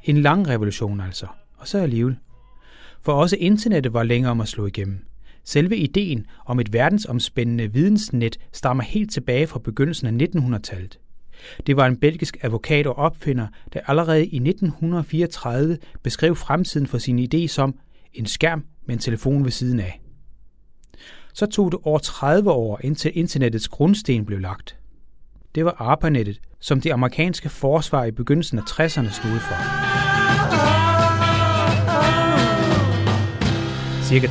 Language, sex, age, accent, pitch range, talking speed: Danish, male, 30-49, native, 110-155 Hz, 140 wpm